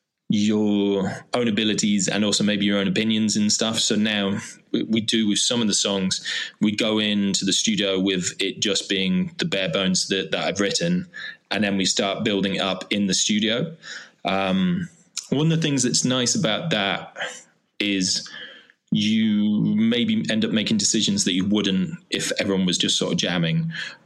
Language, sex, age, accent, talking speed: English, male, 20-39, British, 175 wpm